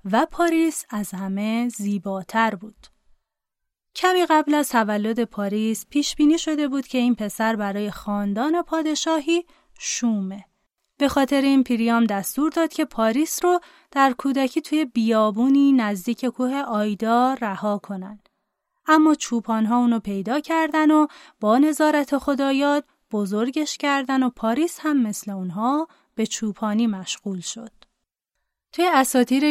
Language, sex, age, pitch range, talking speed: Persian, female, 30-49, 210-295 Hz, 125 wpm